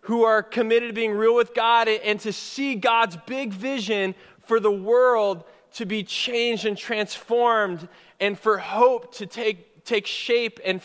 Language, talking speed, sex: English, 165 wpm, male